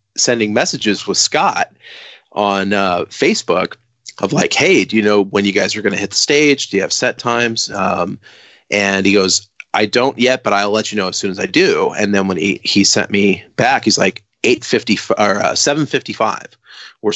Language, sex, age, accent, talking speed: English, male, 30-49, American, 215 wpm